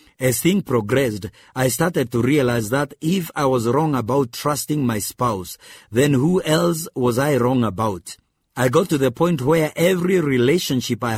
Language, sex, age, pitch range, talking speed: English, male, 50-69, 115-150 Hz, 170 wpm